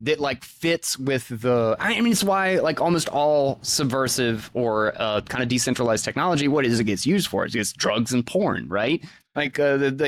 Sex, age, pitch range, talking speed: male, 20-39, 105-130 Hz, 200 wpm